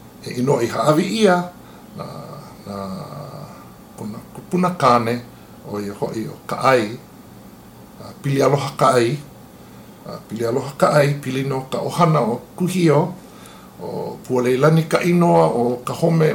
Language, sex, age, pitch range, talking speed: English, male, 50-69, 110-155 Hz, 100 wpm